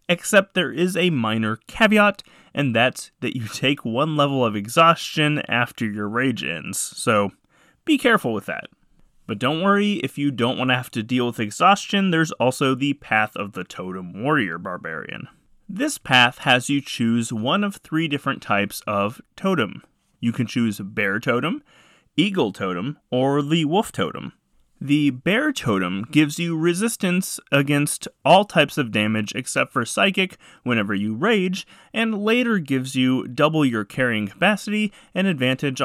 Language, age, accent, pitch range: English, 30-49, American, 115-180 Hz